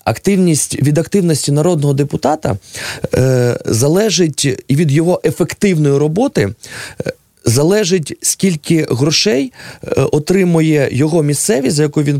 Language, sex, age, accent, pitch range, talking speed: Russian, male, 20-39, native, 125-155 Hz, 105 wpm